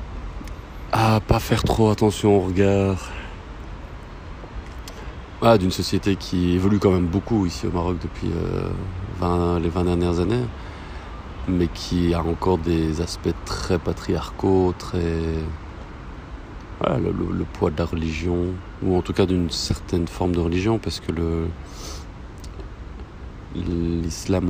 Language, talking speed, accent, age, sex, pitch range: French, 120 wpm, French, 40-59, male, 85-100 Hz